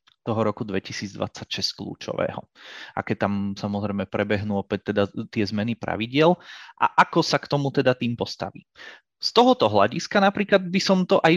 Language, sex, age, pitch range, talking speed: Czech, male, 20-39, 105-130 Hz, 160 wpm